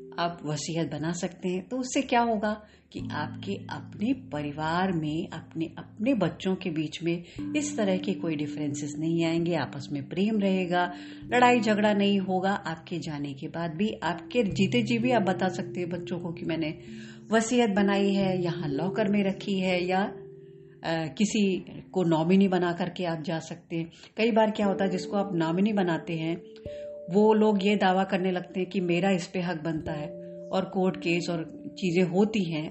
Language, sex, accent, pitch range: Hindi, female, native, 160-215 Hz